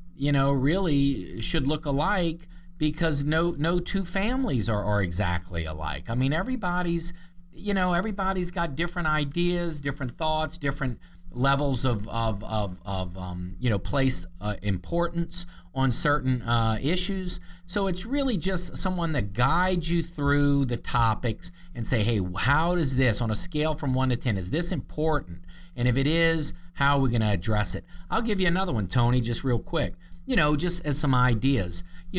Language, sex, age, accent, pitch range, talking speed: English, male, 40-59, American, 115-170 Hz, 180 wpm